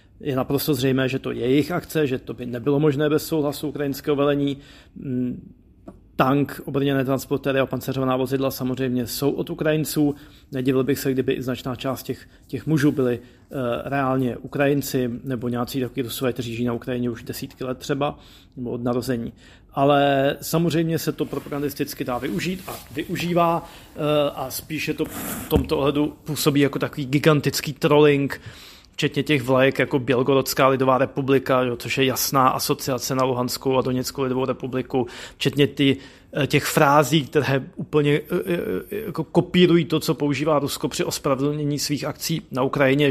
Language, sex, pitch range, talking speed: Slovak, male, 130-150 Hz, 160 wpm